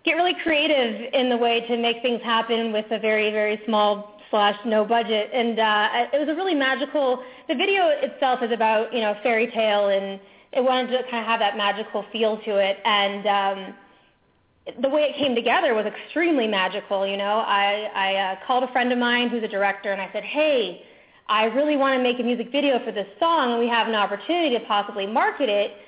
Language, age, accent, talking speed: English, 20-39, American, 215 wpm